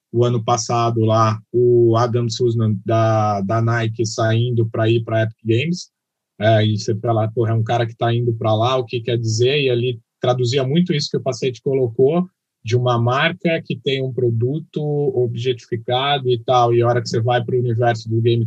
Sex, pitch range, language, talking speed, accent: male, 115-135 Hz, Portuguese, 205 wpm, Brazilian